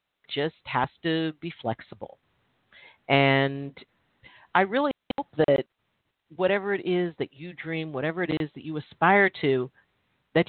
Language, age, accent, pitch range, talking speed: English, 50-69, American, 140-200 Hz, 135 wpm